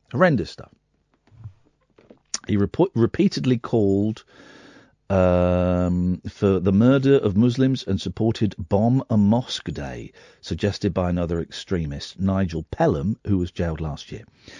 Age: 50-69